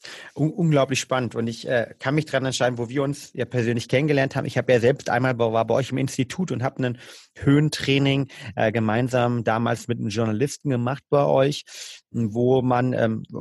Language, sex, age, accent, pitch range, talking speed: German, male, 30-49, German, 115-135 Hz, 190 wpm